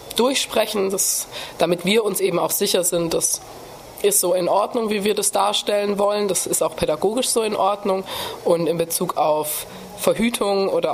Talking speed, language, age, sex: 170 wpm, German, 20-39, female